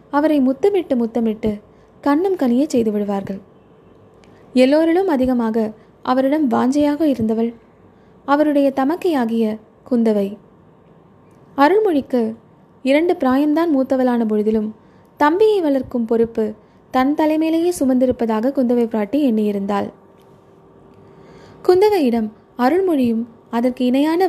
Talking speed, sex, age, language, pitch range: 80 wpm, female, 20-39, Tamil, 220-290 Hz